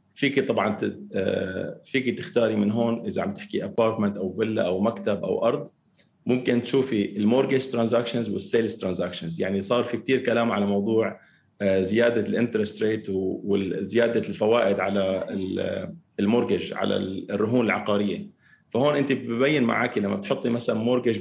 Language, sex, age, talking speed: Arabic, male, 30-49, 135 wpm